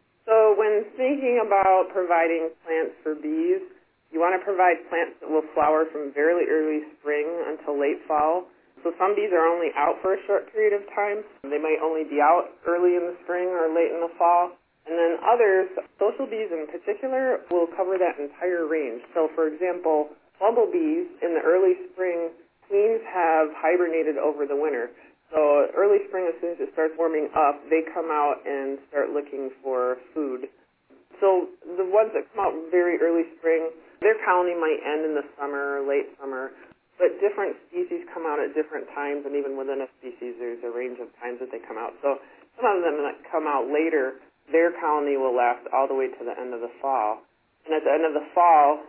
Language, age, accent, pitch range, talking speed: English, 20-39, American, 145-185 Hz, 200 wpm